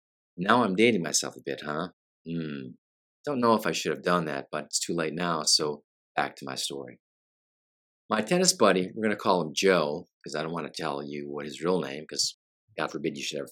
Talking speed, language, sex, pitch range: 230 wpm, English, male, 75-100 Hz